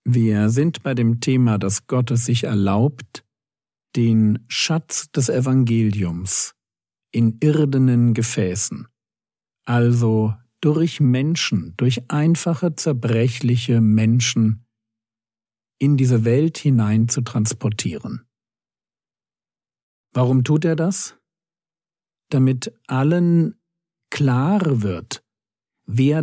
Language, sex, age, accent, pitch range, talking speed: German, male, 50-69, German, 115-145 Hz, 90 wpm